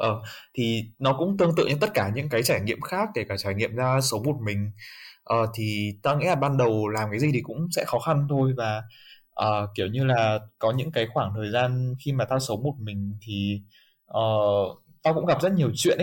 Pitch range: 105-145 Hz